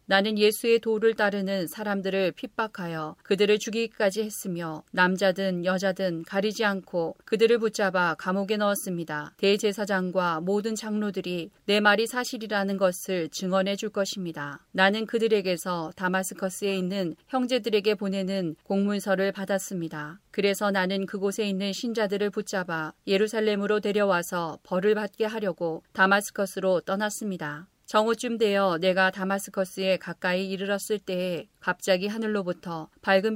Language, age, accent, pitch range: Korean, 40-59, native, 180-210 Hz